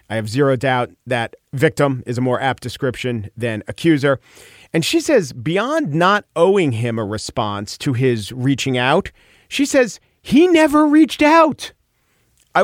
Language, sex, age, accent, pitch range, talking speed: English, male, 40-59, American, 120-175 Hz, 155 wpm